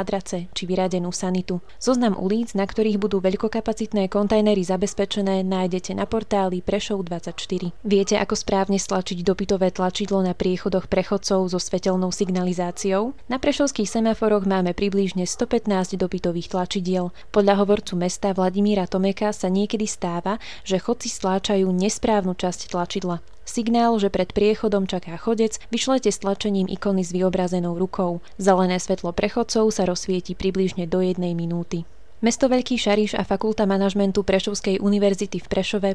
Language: Slovak